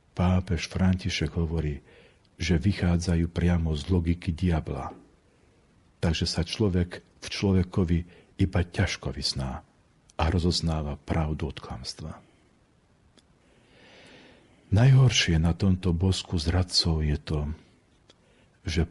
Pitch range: 80-95 Hz